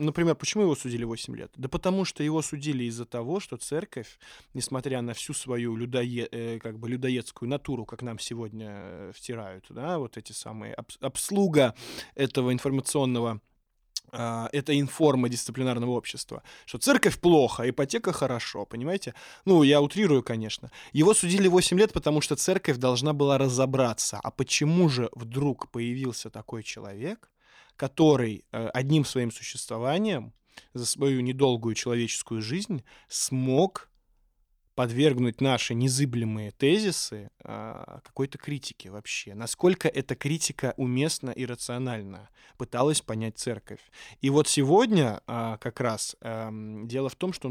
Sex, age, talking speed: male, 20-39, 130 wpm